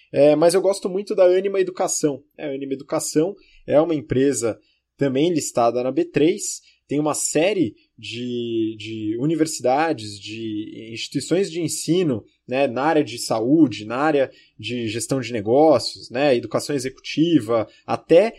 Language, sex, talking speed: Portuguese, male, 140 wpm